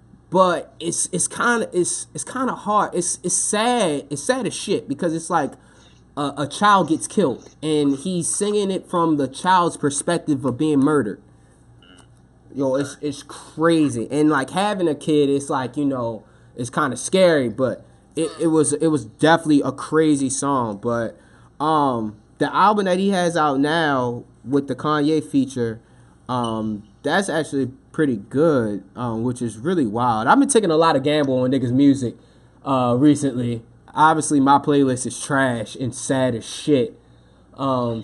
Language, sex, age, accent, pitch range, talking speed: English, male, 20-39, American, 125-165 Hz, 170 wpm